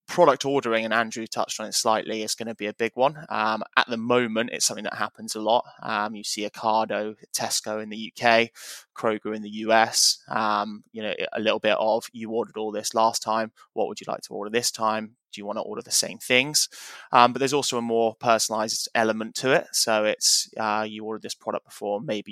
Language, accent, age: English, British, 20-39